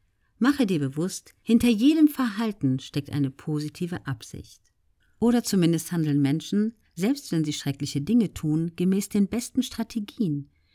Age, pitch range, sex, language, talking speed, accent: 50-69, 140-205 Hz, female, German, 135 wpm, German